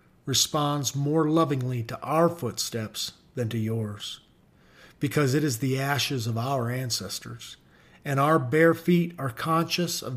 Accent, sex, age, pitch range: American, male, 40-59, 125-160 Hz